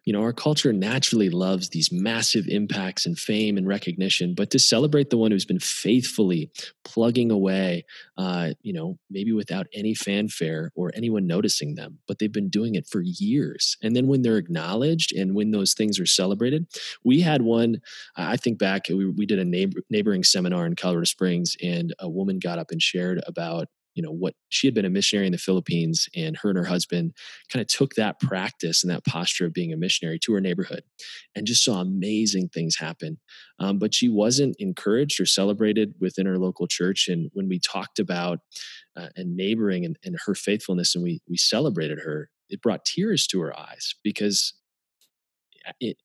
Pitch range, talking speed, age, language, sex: 90-140 Hz, 195 wpm, 20-39, English, male